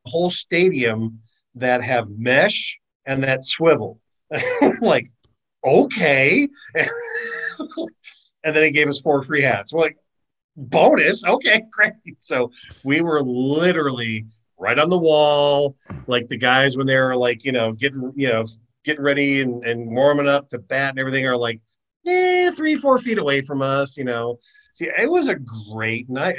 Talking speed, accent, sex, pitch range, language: 160 wpm, American, male, 110-145 Hz, English